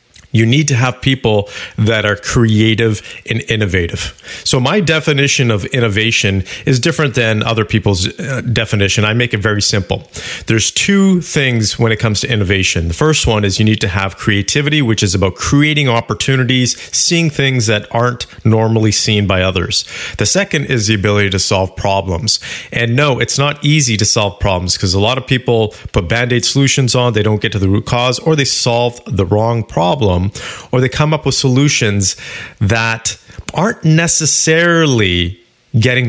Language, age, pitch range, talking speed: English, 40-59, 105-135 Hz, 175 wpm